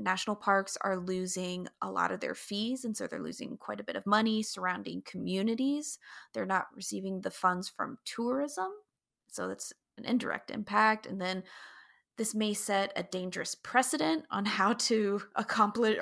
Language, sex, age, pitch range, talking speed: English, female, 20-39, 195-255 Hz, 165 wpm